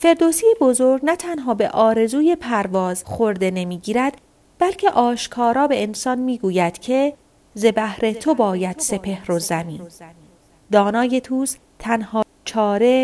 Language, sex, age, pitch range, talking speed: Persian, female, 30-49, 195-270 Hz, 120 wpm